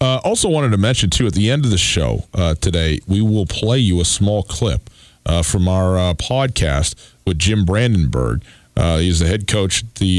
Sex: male